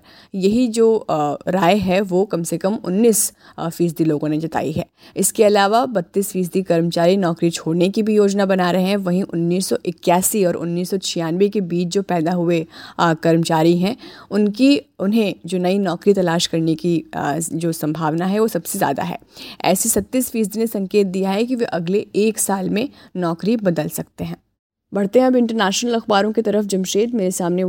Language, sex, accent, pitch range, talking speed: Hindi, female, native, 165-200 Hz, 175 wpm